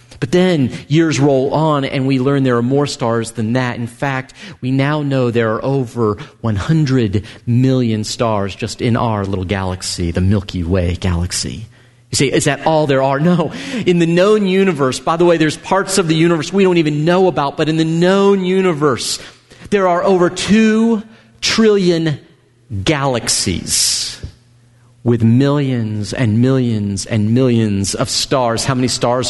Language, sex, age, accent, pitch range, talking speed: English, male, 40-59, American, 120-165 Hz, 165 wpm